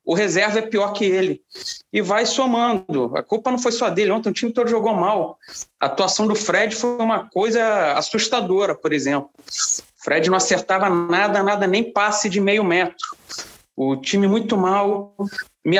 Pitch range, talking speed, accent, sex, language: 170-220 Hz, 180 wpm, Brazilian, male, Portuguese